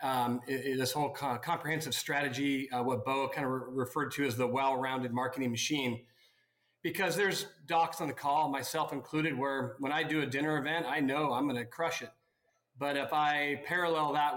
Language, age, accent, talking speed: English, 40-59, American, 185 wpm